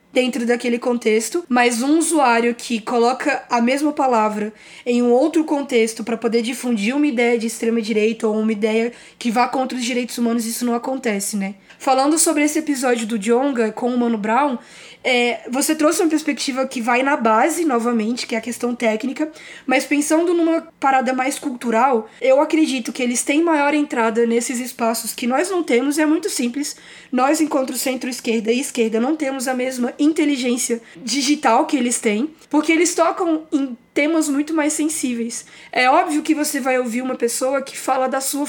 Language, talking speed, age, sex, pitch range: Portuguese, 180 wpm, 20-39, female, 240-295 Hz